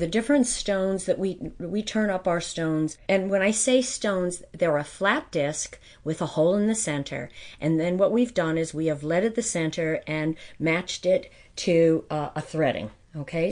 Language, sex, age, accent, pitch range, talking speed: English, female, 40-59, American, 140-170 Hz, 195 wpm